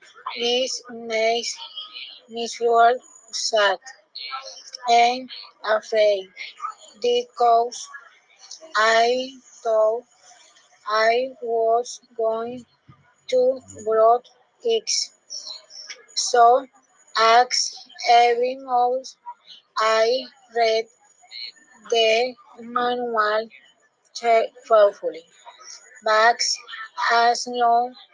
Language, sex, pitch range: Spanish, female, 230-295 Hz